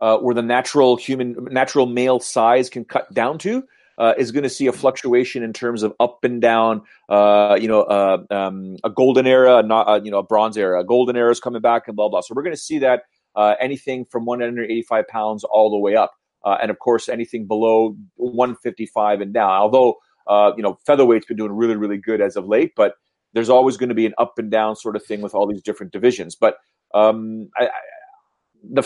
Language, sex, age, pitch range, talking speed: English, male, 40-59, 105-125 Hz, 225 wpm